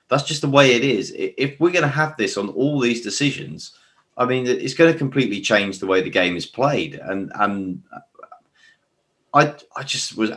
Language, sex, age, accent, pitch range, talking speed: English, male, 30-49, British, 95-125 Hz, 205 wpm